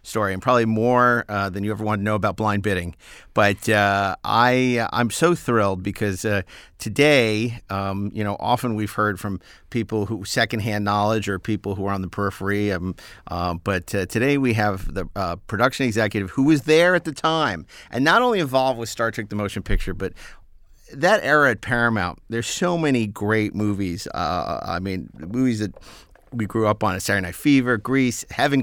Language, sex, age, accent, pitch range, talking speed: English, male, 50-69, American, 95-120 Hz, 195 wpm